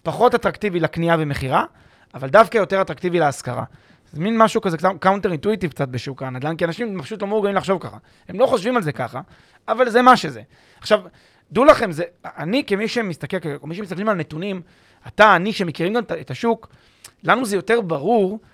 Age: 30-49